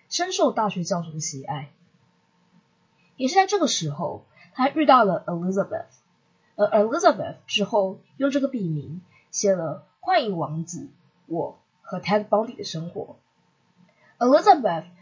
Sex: female